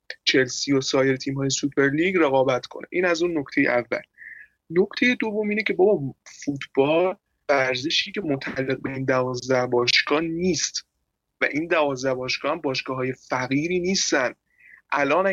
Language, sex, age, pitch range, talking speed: Persian, male, 20-39, 135-180 Hz, 135 wpm